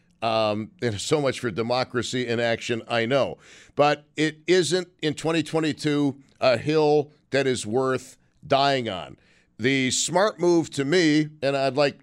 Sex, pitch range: male, 125-160 Hz